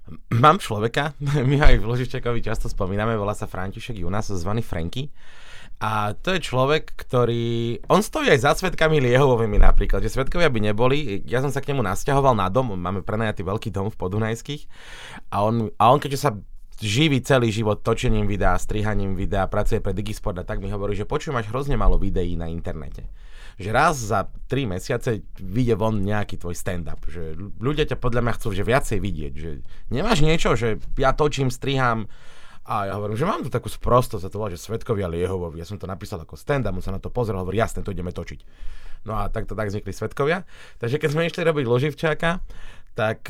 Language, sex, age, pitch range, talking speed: Slovak, male, 20-39, 95-125 Hz, 200 wpm